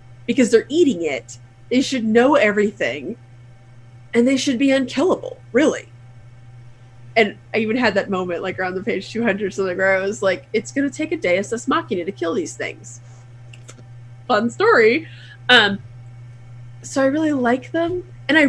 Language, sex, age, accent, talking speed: English, female, 30-49, American, 170 wpm